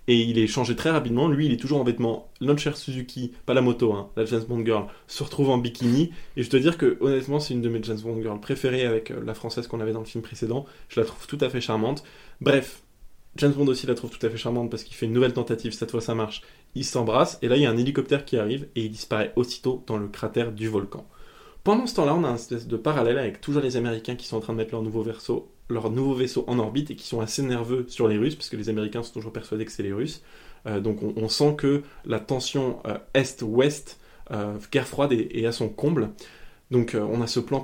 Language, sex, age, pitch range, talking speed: French, male, 20-39, 115-135 Hz, 265 wpm